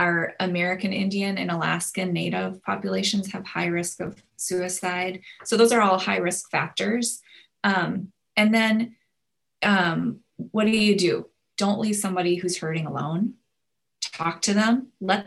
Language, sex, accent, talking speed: English, female, American, 145 wpm